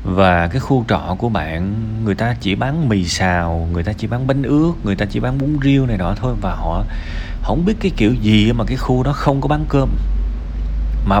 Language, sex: Vietnamese, male